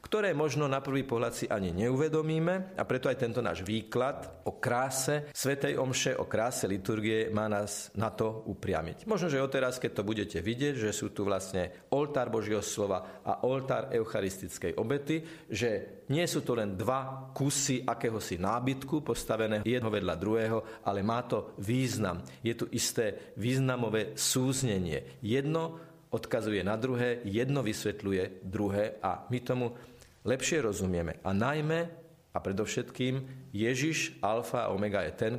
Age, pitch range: 40-59, 100-135 Hz